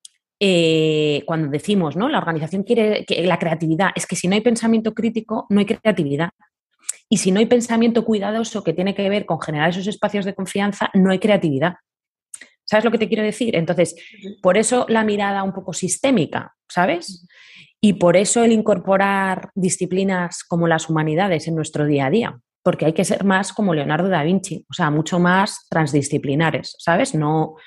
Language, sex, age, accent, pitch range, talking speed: Spanish, female, 20-39, Spanish, 150-195 Hz, 180 wpm